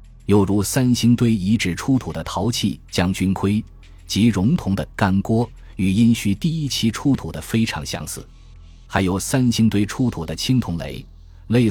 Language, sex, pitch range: Chinese, male, 85-115 Hz